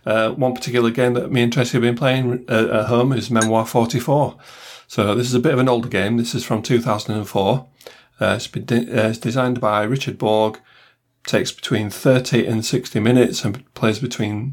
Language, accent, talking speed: English, British, 200 wpm